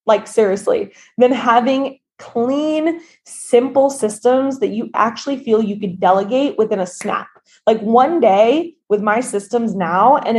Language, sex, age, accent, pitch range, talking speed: English, female, 20-39, American, 210-280 Hz, 145 wpm